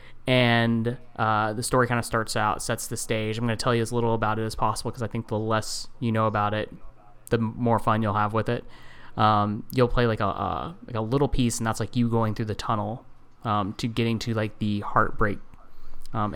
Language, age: English, 20-39